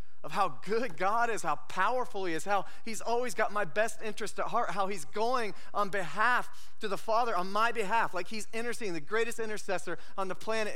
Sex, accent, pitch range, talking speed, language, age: male, American, 170-215 Hz, 210 wpm, English, 30-49